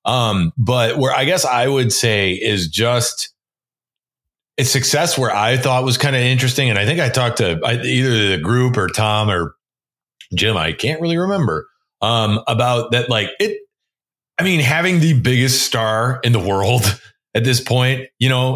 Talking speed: 185 wpm